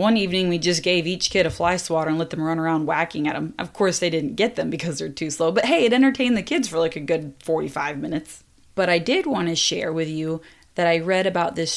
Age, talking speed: 20-39, 270 wpm